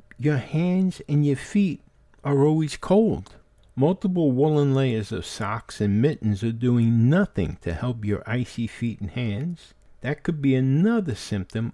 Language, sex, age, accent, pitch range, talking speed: English, male, 50-69, American, 105-145 Hz, 155 wpm